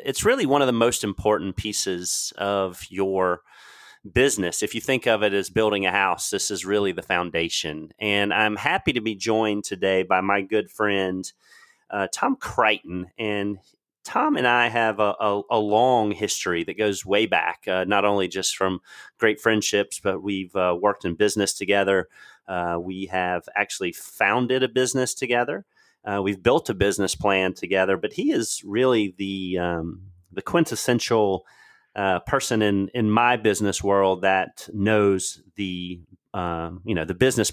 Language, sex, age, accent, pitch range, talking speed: English, male, 30-49, American, 95-105 Hz, 165 wpm